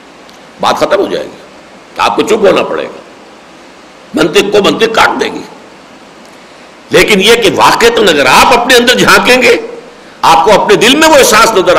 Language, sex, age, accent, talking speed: English, male, 60-79, Indian, 155 wpm